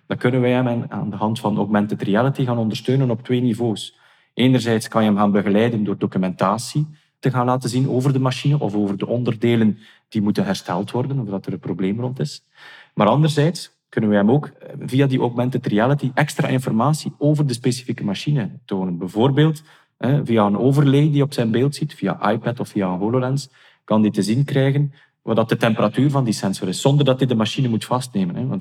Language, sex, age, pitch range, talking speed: Dutch, male, 40-59, 105-135 Hz, 205 wpm